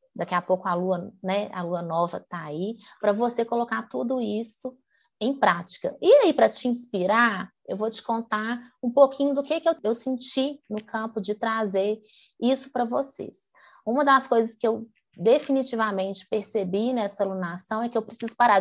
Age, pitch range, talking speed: 20-39, 195-260 Hz, 175 wpm